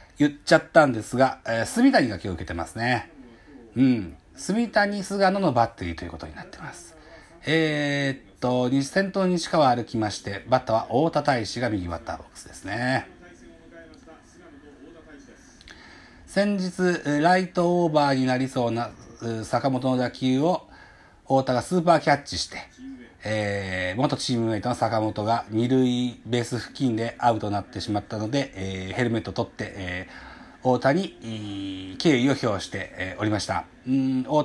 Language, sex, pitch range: Japanese, male, 105-150 Hz